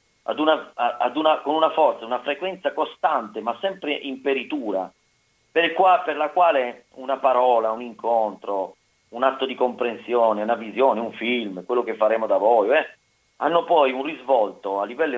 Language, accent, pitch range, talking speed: Italian, native, 110-155 Hz, 170 wpm